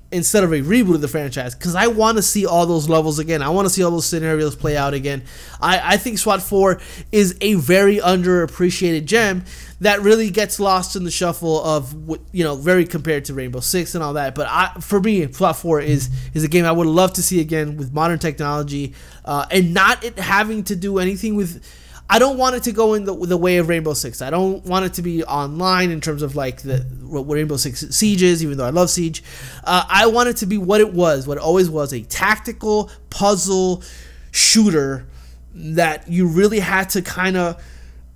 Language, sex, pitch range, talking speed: English, male, 150-195 Hz, 220 wpm